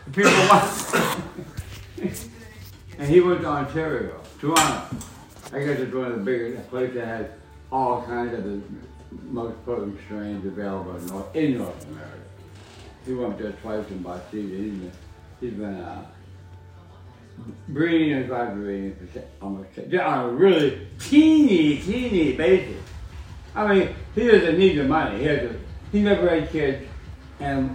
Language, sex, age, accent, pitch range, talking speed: English, male, 60-79, American, 100-150 Hz, 130 wpm